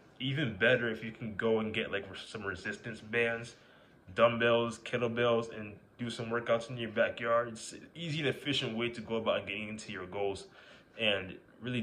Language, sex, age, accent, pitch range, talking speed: English, male, 20-39, American, 95-115 Hz, 185 wpm